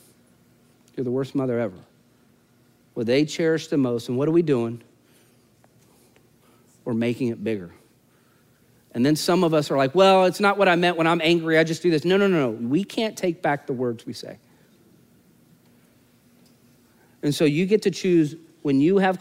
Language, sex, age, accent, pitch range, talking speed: English, male, 40-59, American, 135-190 Hz, 190 wpm